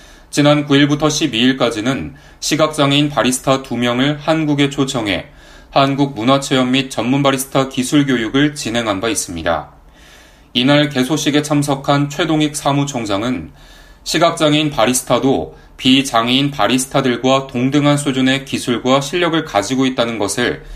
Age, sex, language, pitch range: 30-49, male, Korean, 120-145 Hz